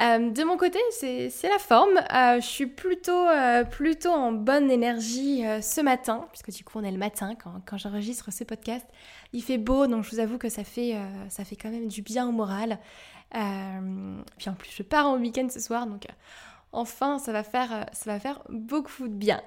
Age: 10-29